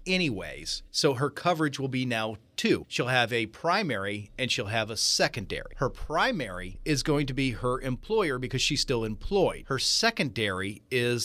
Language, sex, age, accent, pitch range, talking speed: English, male, 40-59, American, 110-145 Hz, 170 wpm